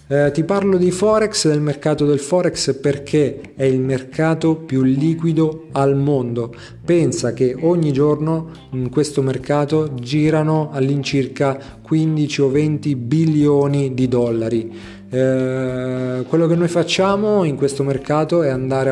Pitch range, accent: 130-155 Hz, native